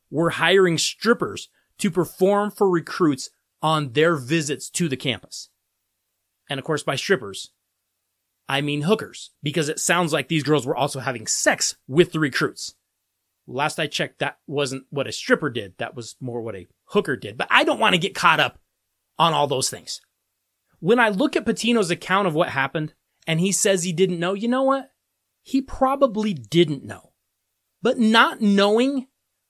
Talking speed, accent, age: 175 wpm, American, 30-49